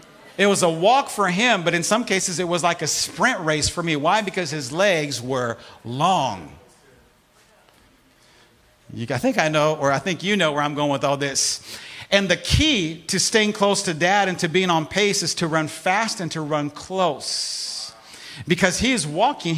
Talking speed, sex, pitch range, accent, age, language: 195 wpm, male, 160-215 Hz, American, 50-69, English